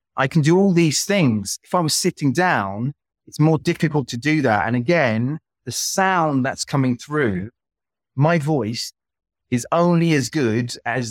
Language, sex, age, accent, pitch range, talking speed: English, male, 30-49, British, 115-155 Hz, 165 wpm